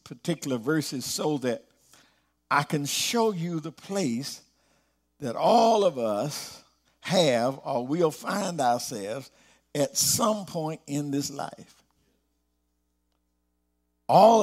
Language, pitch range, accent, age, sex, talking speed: English, 135-190 Hz, American, 50-69, male, 110 wpm